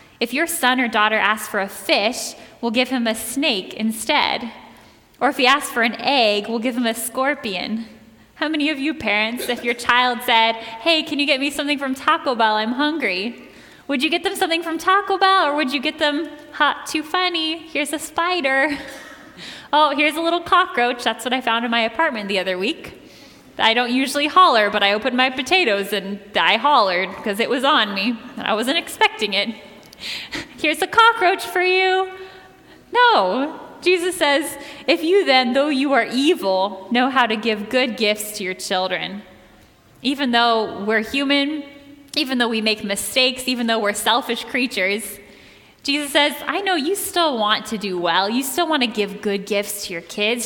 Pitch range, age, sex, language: 215-300 Hz, 10-29, female, English